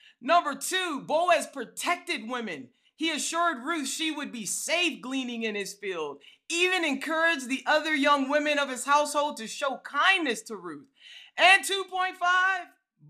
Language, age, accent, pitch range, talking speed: English, 40-59, American, 245-345 Hz, 145 wpm